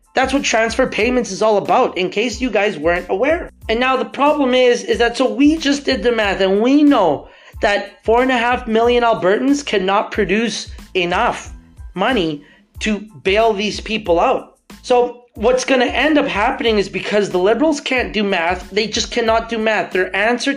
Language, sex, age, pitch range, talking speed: English, male, 30-49, 200-255 Hz, 190 wpm